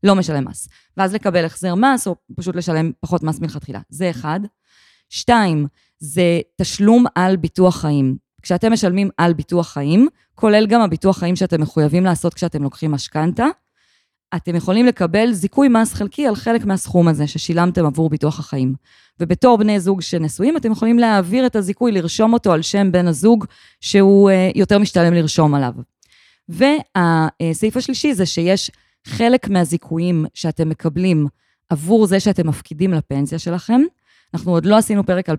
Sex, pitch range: female, 155-200 Hz